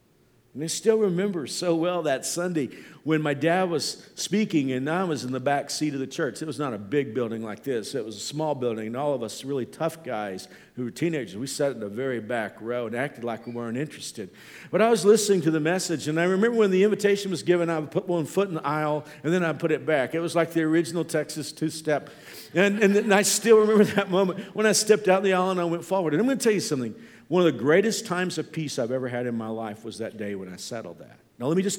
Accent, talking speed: American, 275 wpm